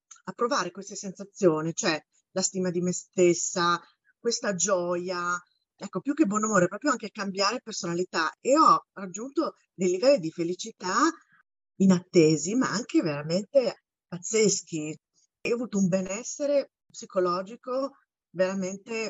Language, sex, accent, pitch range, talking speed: Italian, female, native, 170-215 Hz, 125 wpm